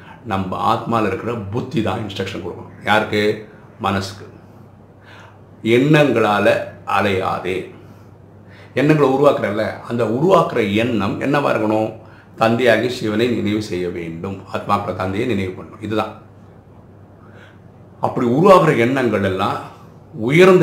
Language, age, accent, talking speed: Tamil, 50-69, native, 90 wpm